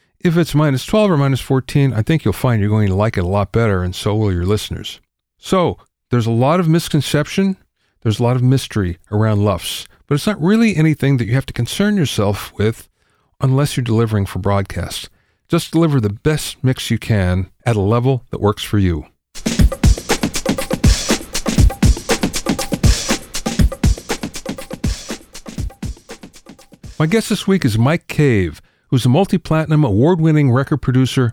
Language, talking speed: English, 155 wpm